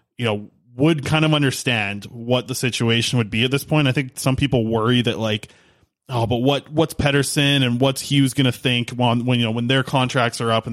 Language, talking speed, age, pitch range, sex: English, 235 wpm, 20-39, 120-145 Hz, male